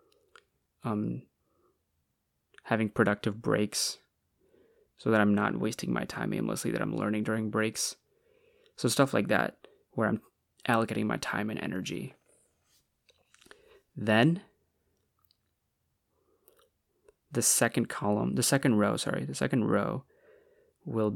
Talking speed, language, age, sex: 115 wpm, English, 20-39, male